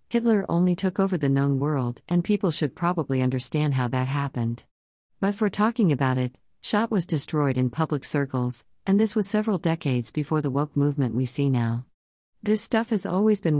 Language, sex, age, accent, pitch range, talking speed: English, female, 50-69, American, 130-175 Hz, 190 wpm